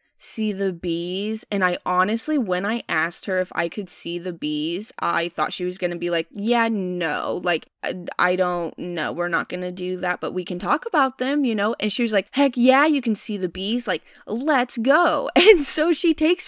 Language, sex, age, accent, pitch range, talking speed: English, female, 20-39, American, 180-230 Hz, 220 wpm